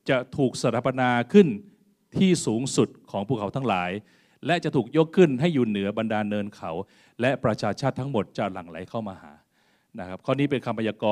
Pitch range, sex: 110-150 Hz, male